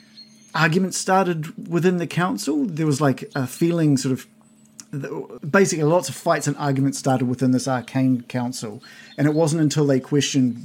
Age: 40-59